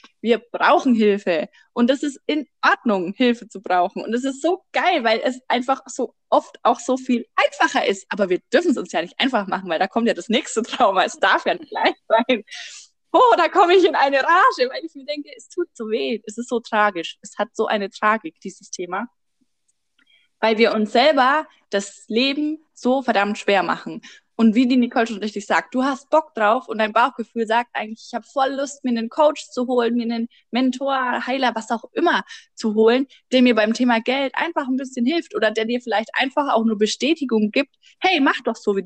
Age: 20-39